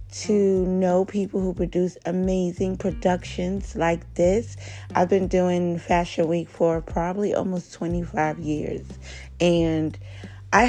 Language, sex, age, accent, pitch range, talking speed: English, female, 40-59, American, 140-170 Hz, 120 wpm